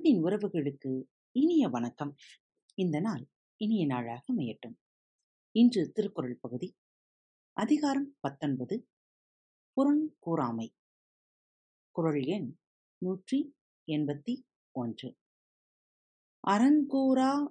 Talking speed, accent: 45 wpm, native